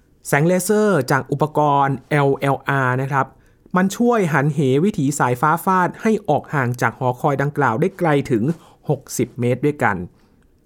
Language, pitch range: Thai, 125-165 Hz